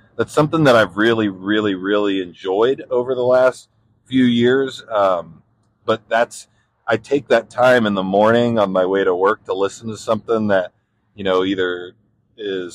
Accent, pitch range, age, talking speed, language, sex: American, 95-115 Hz, 40-59, 175 wpm, English, male